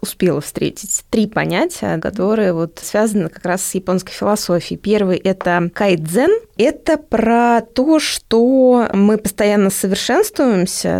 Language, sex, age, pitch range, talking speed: Russian, female, 20-39, 195-240 Hz, 115 wpm